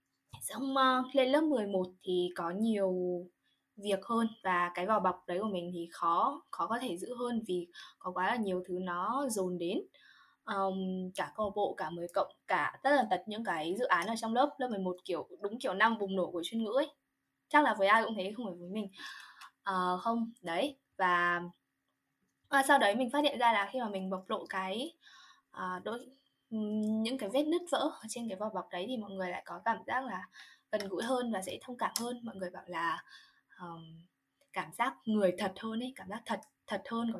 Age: 10-29